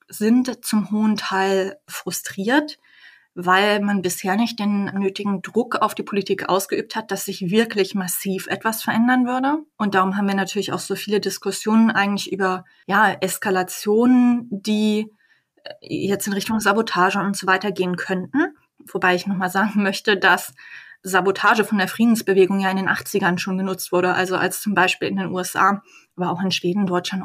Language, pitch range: German, 190-225 Hz